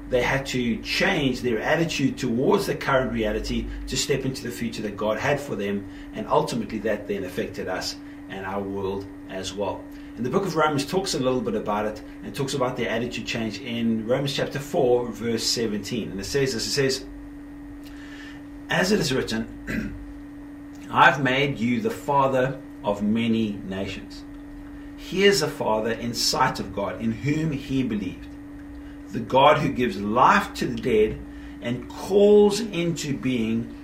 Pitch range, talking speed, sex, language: 110-170 Hz, 170 wpm, male, English